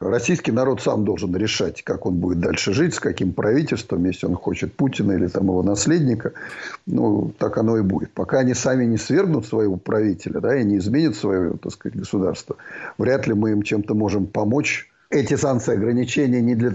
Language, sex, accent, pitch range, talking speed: Russian, male, native, 100-130 Hz, 185 wpm